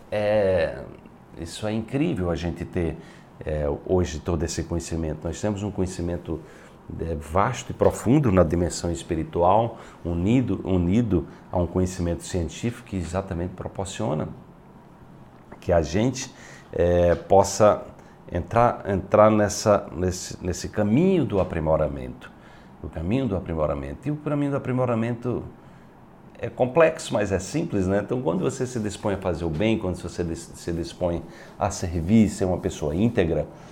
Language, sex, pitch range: Portuguese, male, 85-115 Hz